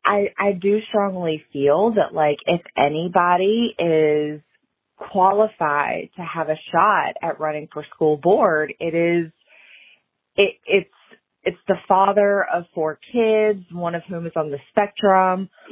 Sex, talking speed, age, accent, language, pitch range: female, 140 wpm, 30-49, American, English, 150-205 Hz